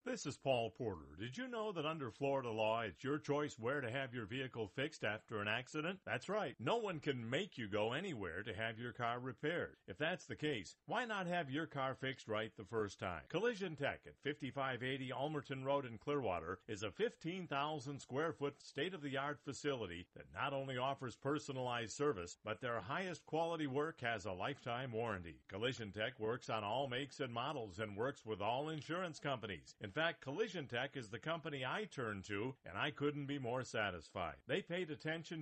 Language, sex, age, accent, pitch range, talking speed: English, male, 50-69, American, 115-150 Hz, 200 wpm